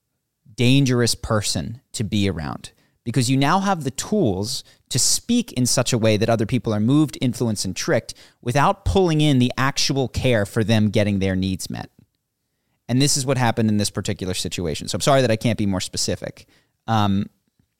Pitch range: 105-130 Hz